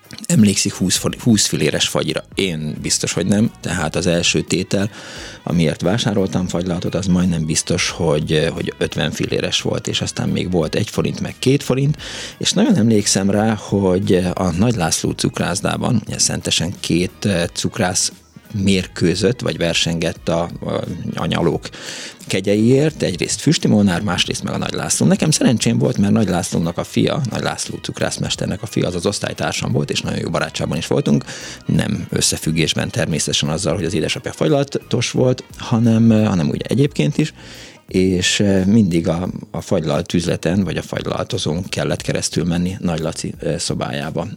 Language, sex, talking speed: Hungarian, male, 145 wpm